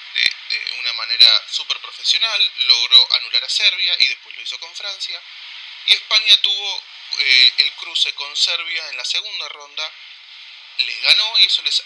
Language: Spanish